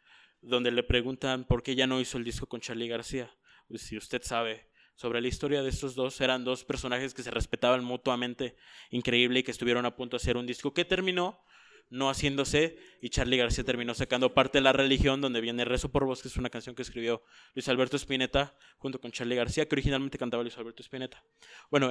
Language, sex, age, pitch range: Spanish, male, 20-39, 120-140 Hz